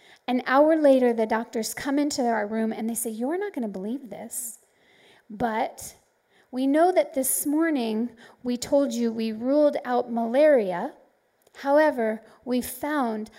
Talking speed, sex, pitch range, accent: 150 wpm, female, 230-290 Hz, American